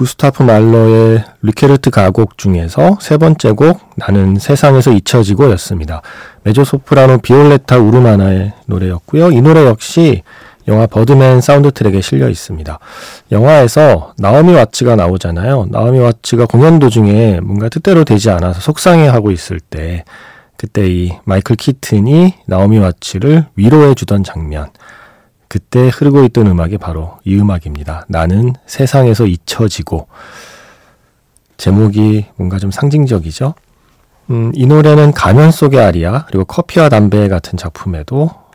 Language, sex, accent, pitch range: Korean, male, native, 95-140 Hz